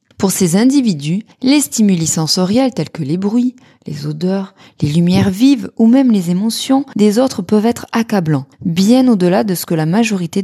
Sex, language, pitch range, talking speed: female, French, 180-240 Hz, 180 wpm